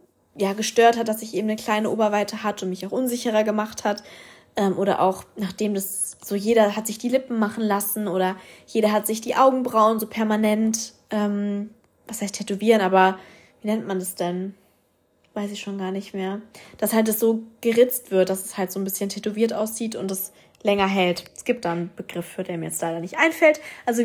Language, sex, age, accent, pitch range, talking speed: German, female, 20-39, German, 195-225 Hz, 210 wpm